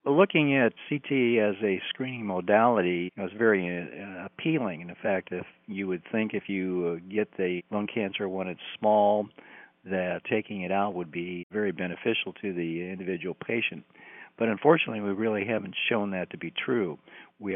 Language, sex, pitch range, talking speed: English, male, 90-100 Hz, 165 wpm